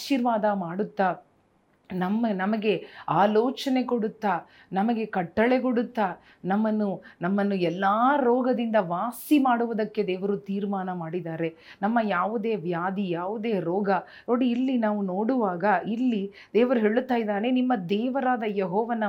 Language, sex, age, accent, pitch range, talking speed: Kannada, female, 30-49, native, 195-240 Hz, 105 wpm